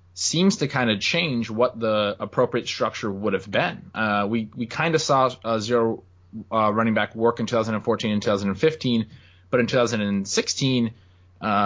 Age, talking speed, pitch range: 20-39, 160 wpm, 100-125 Hz